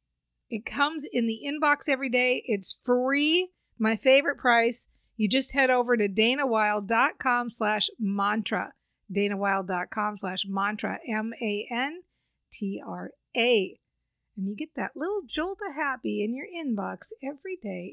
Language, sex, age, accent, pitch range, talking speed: English, female, 50-69, American, 200-265 Hz, 125 wpm